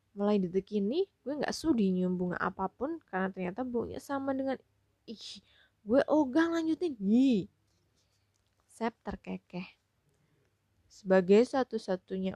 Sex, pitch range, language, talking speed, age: female, 170-195 Hz, Indonesian, 105 wpm, 20-39